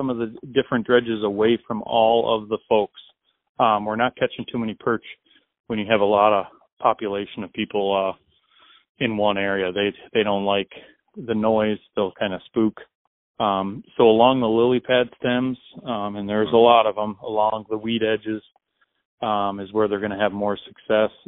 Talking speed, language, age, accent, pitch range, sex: 190 wpm, English, 30-49, American, 105-120 Hz, male